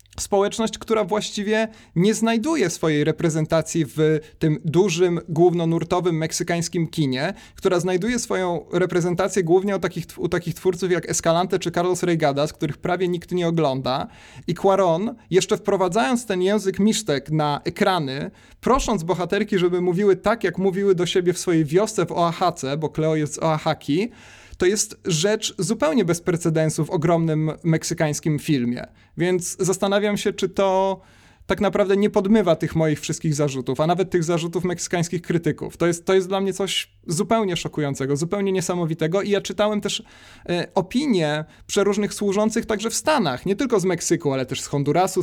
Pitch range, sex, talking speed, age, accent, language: 160-195 Hz, male, 160 wpm, 30-49, native, Polish